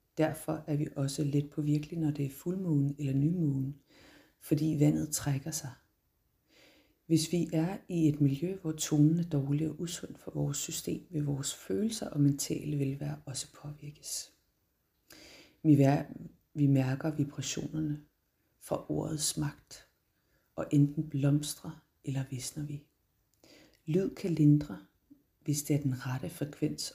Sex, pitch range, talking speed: female, 140-155 Hz, 140 wpm